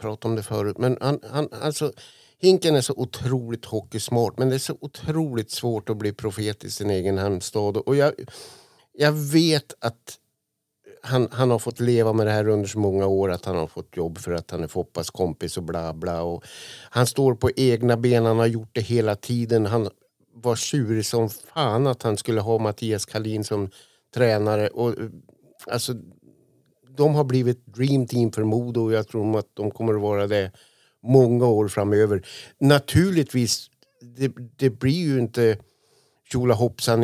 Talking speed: 180 wpm